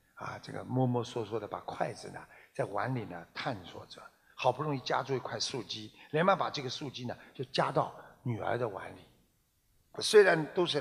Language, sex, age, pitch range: Chinese, male, 60-79, 125-160 Hz